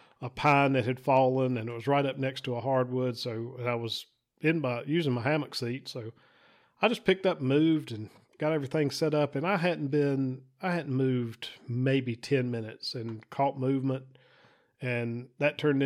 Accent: American